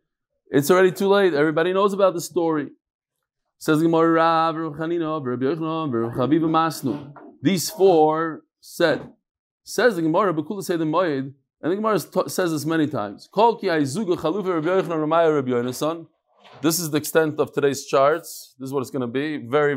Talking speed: 165 wpm